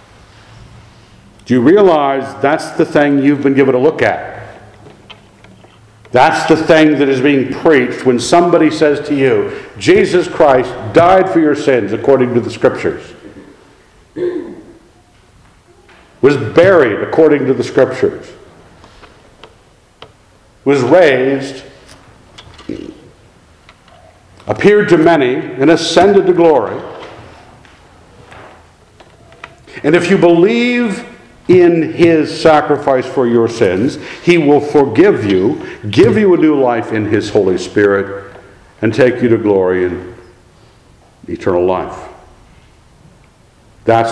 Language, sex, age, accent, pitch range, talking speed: English, male, 60-79, American, 115-175 Hz, 110 wpm